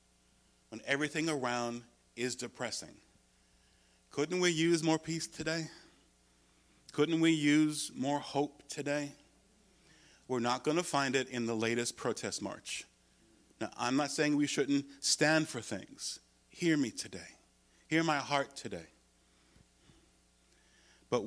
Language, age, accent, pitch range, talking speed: English, 50-69, American, 95-145 Hz, 125 wpm